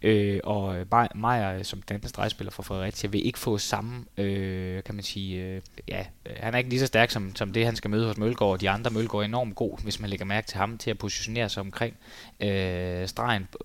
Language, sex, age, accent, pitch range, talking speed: Danish, male, 20-39, native, 100-120 Hz, 225 wpm